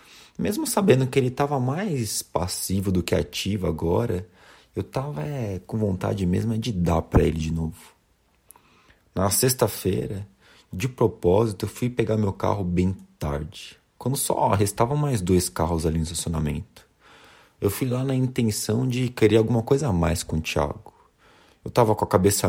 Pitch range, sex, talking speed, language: 90-115 Hz, male, 165 wpm, Portuguese